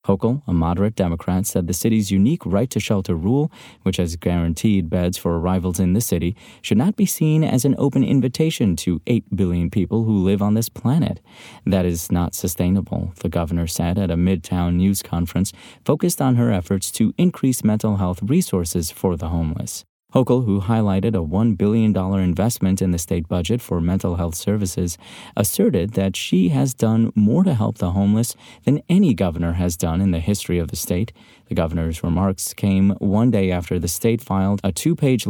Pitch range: 90-115 Hz